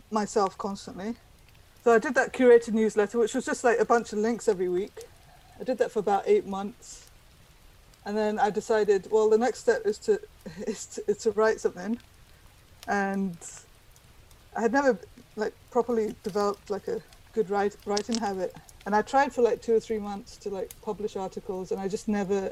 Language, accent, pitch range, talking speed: English, British, 195-235 Hz, 190 wpm